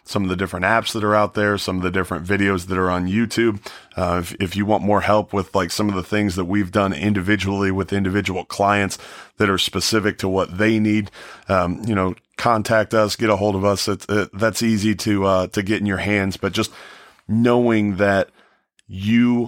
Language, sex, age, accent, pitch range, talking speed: English, male, 30-49, American, 90-105 Hz, 220 wpm